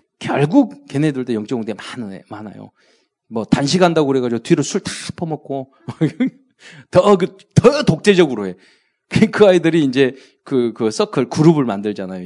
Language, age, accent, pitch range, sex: Korean, 40-59, native, 135-210 Hz, male